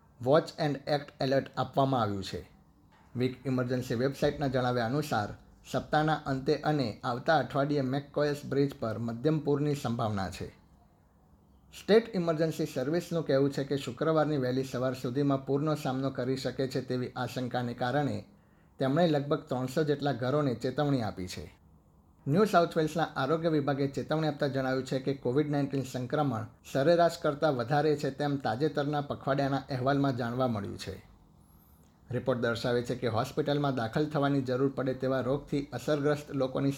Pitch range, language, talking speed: 125-145 Hz, Gujarati, 140 wpm